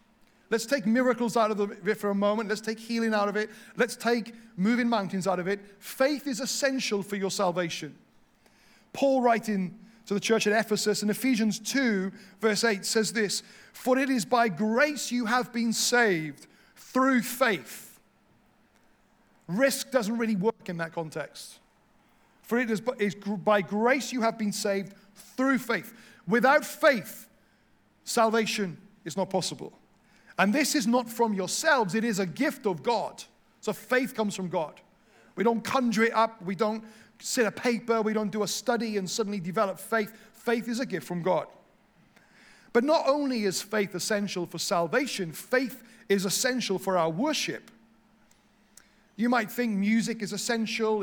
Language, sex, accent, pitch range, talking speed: English, male, British, 205-235 Hz, 165 wpm